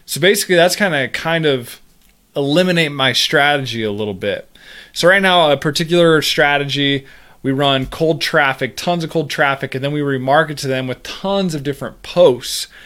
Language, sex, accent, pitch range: English, male, American, 120-150 Hz